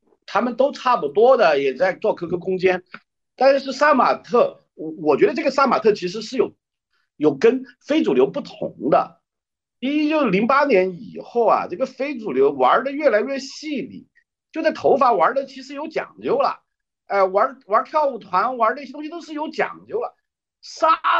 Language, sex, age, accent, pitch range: Chinese, male, 50-69, native, 200-310 Hz